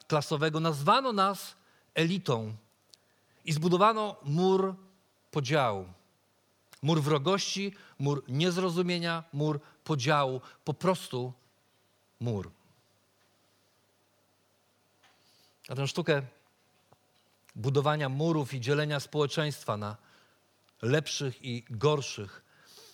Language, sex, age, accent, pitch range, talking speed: Polish, male, 40-59, native, 130-180 Hz, 75 wpm